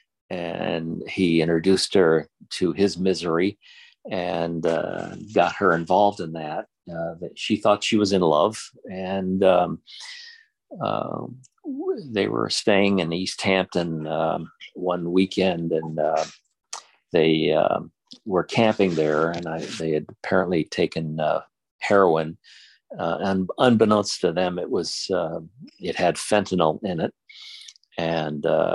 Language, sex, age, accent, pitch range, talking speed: English, male, 50-69, American, 80-105 Hz, 130 wpm